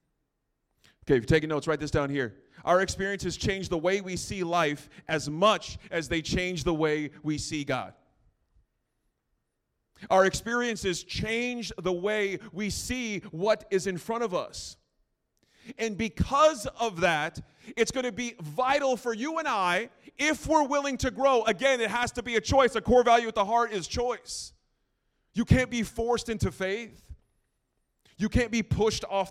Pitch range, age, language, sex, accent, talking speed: 150-225 Hz, 30-49, English, male, American, 170 wpm